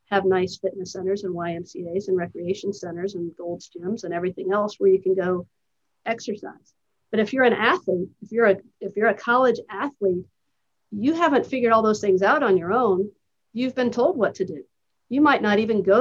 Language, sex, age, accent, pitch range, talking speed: English, female, 50-69, American, 185-220 Hz, 195 wpm